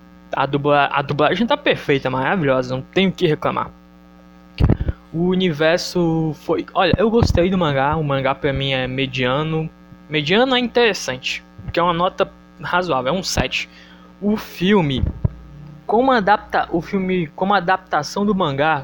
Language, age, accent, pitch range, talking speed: Portuguese, 20-39, Brazilian, 130-185 Hz, 150 wpm